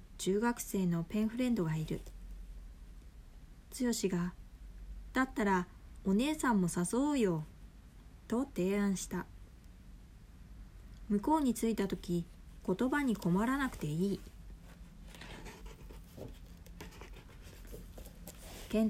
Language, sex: Japanese, female